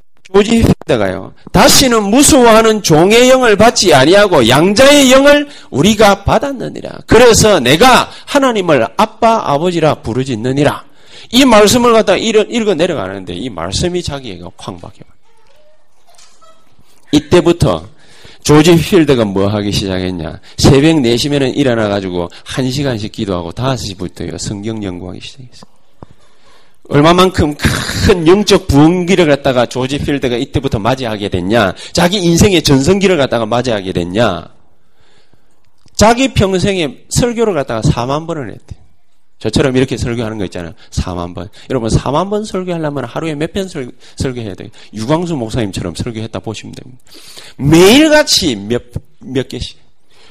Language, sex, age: Korean, male, 40-59